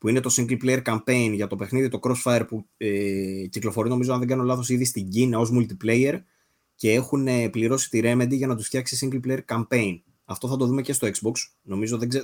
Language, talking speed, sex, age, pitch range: Greek, 225 wpm, male, 20-39, 110-140 Hz